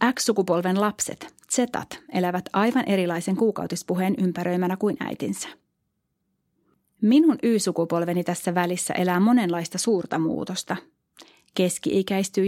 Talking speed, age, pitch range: 90 wpm, 30-49, 175-215 Hz